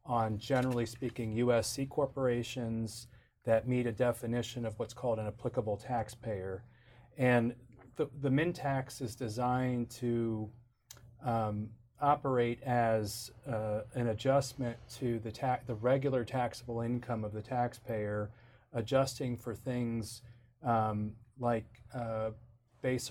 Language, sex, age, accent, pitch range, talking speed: English, male, 40-59, American, 115-130 Hz, 120 wpm